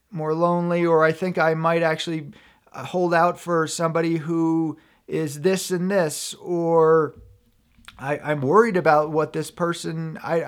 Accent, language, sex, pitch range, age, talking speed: American, English, male, 140-170 Hz, 40-59, 150 wpm